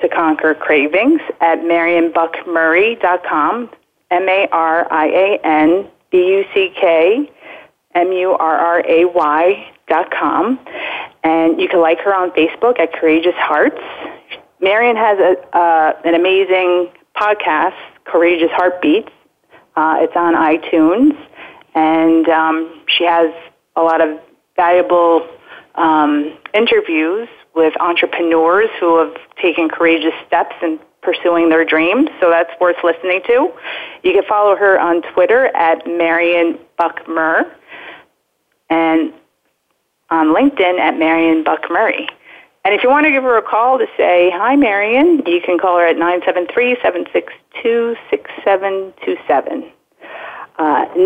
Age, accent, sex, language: 30-49, American, female, English